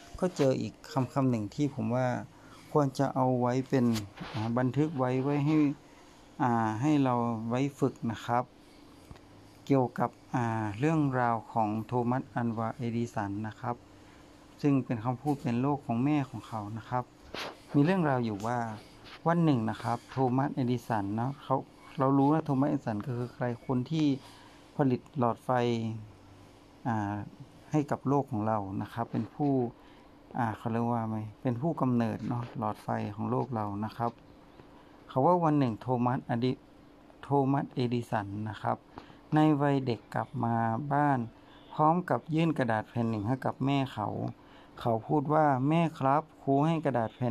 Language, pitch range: Thai, 115-140 Hz